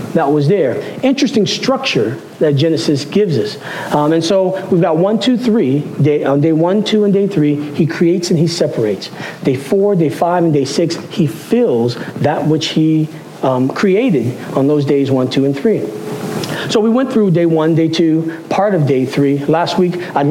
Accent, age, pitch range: American, 40-59, 160-220 Hz